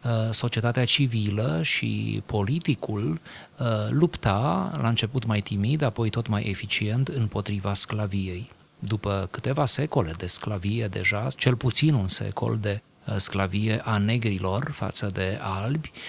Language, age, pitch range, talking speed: Romanian, 30-49, 105-130 Hz, 120 wpm